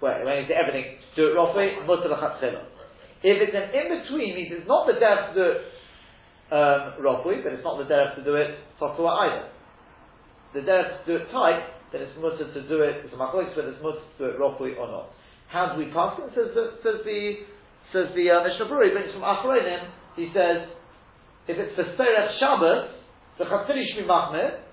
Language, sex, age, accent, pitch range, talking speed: English, male, 40-59, British, 140-205 Hz, 205 wpm